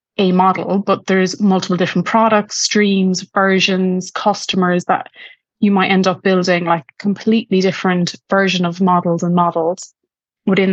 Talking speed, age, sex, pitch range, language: 140 wpm, 20-39, female, 180-205 Hz, English